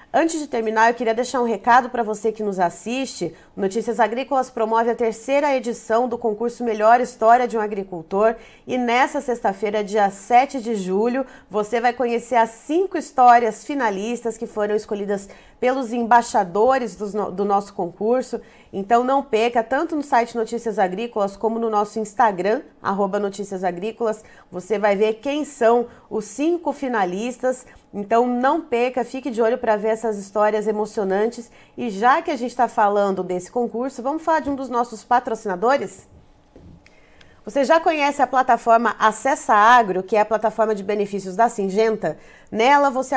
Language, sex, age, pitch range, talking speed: Portuguese, female, 30-49, 215-260 Hz, 160 wpm